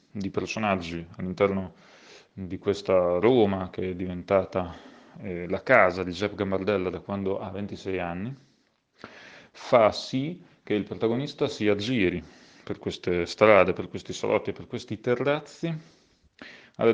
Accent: native